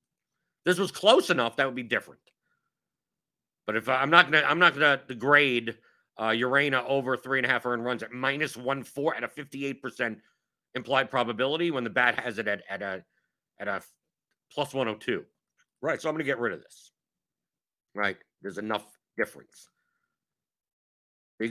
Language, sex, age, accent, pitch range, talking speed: English, male, 50-69, American, 115-145 Hz, 180 wpm